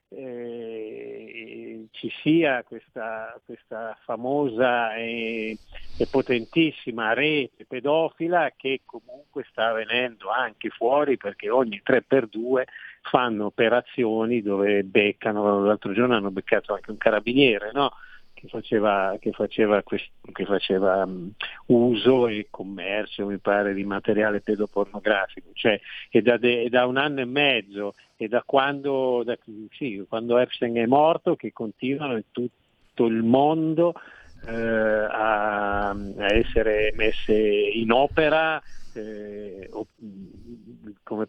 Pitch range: 105-130 Hz